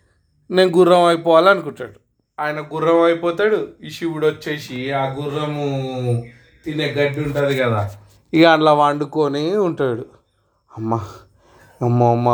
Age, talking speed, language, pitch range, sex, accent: 30-49, 105 wpm, Telugu, 130-150 Hz, male, native